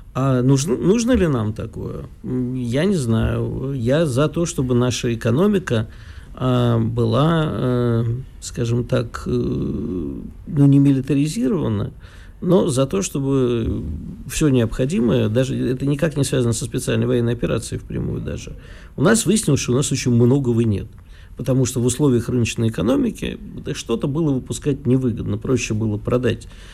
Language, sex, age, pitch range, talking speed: Russian, male, 50-69, 115-140 Hz, 140 wpm